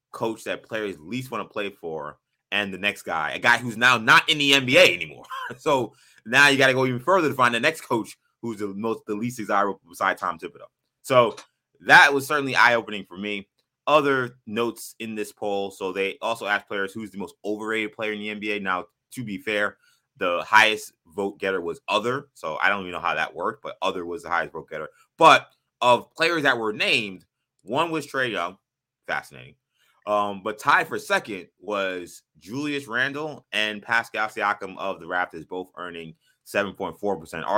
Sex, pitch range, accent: male, 100-140 Hz, American